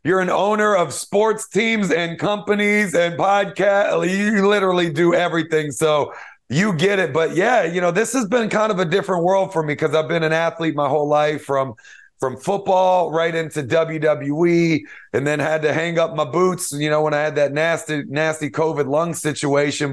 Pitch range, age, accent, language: 135-170 Hz, 30-49, American, English